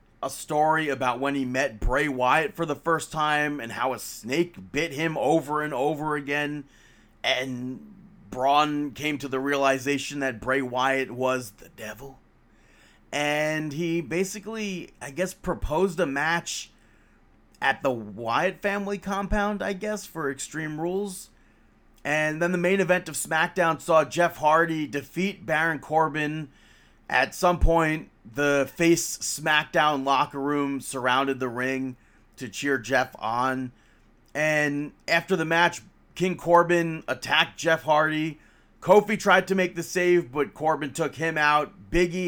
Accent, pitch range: American, 140-170 Hz